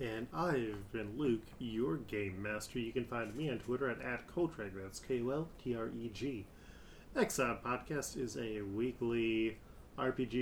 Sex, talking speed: male, 175 wpm